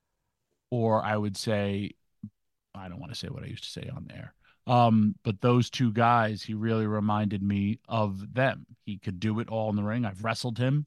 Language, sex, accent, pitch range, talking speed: English, male, American, 105-125 Hz, 210 wpm